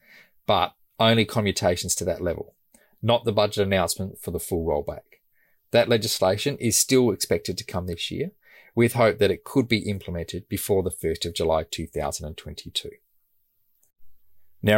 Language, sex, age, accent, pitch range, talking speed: English, male, 30-49, Australian, 95-120 Hz, 145 wpm